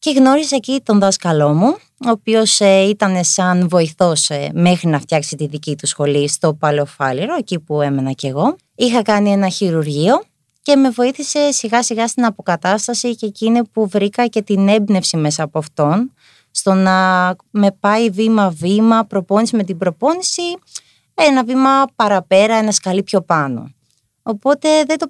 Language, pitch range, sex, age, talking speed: Greek, 165-225 Hz, female, 20-39, 155 wpm